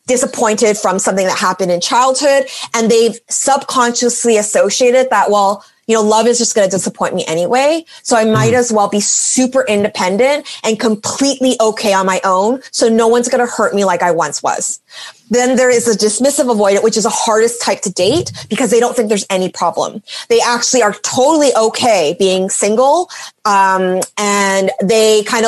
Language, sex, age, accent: English, female, 20-39, American